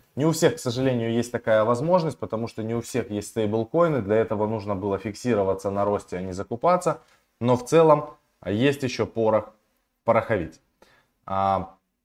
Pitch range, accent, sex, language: 100-130 Hz, native, male, Russian